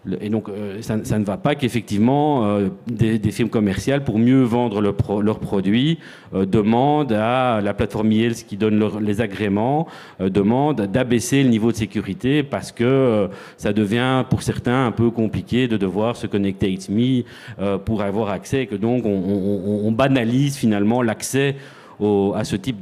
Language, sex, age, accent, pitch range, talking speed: French, male, 40-59, French, 105-130 Hz, 190 wpm